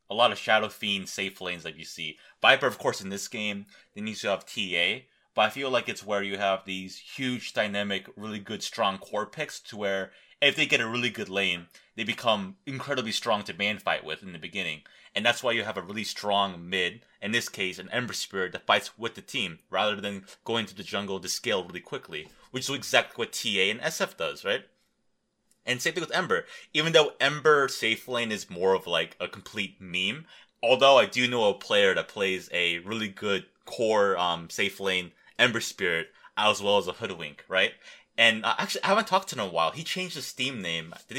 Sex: male